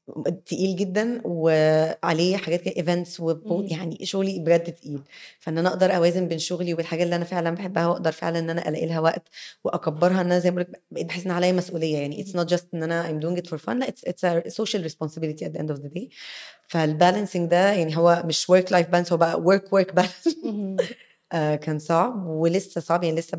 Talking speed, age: 210 wpm, 20-39